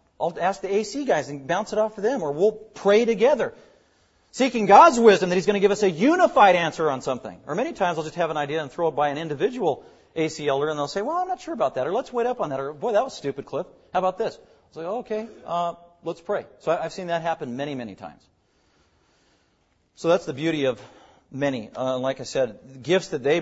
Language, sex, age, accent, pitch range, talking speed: English, male, 40-59, American, 125-175 Hz, 255 wpm